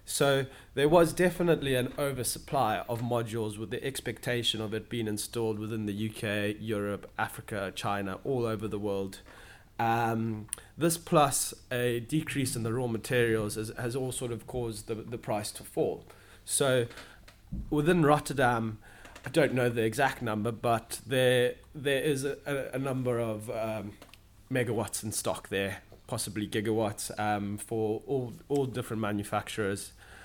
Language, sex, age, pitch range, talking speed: English, male, 20-39, 110-130 Hz, 150 wpm